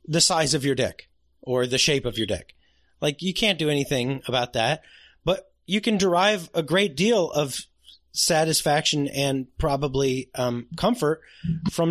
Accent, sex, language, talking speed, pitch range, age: American, male, English, 160 wpm, 125-185 Hz, 30-49